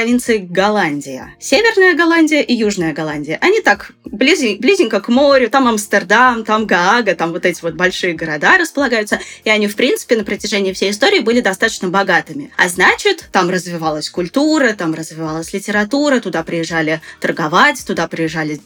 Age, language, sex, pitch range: 20-39, Russian, female, 170-240 Hz